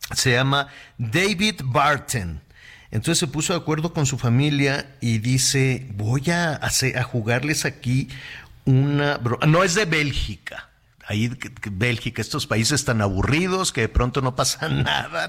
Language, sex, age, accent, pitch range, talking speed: Spanish, male, 50-69, Mexican, 115-145 Hz, 155 wpm